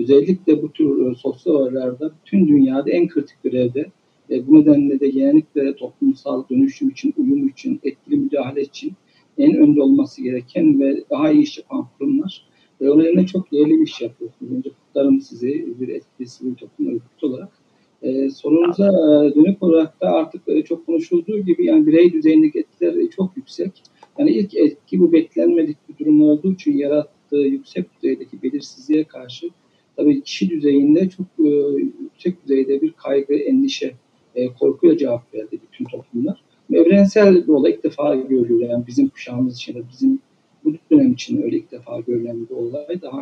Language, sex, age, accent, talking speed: Turkish, male, 50-69, native, 160 wpm